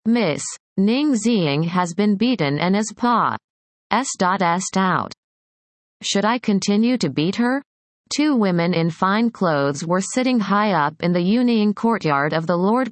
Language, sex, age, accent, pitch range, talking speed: English, female, 30-49, American, 170-230 Hz, 150 wpm